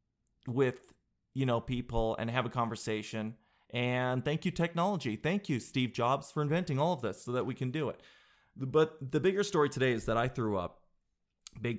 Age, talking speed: 30-49, 195 wpm